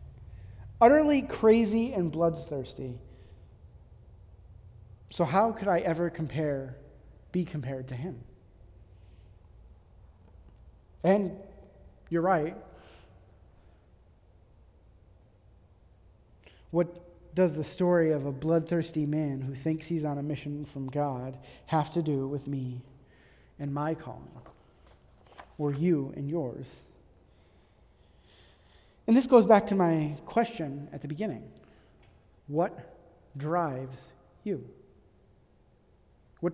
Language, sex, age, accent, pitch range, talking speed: English, male, 30-49, American, 105-165 Hz, 95 wpm